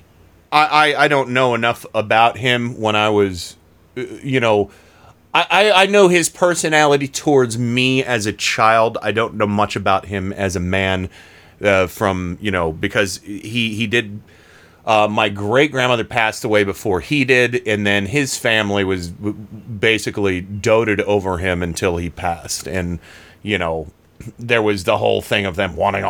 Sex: male